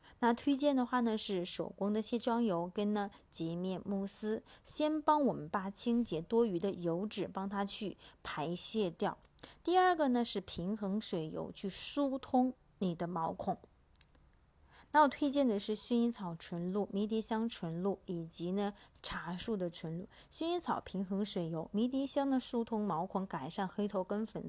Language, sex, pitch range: Chinese, female, 180-235 Hz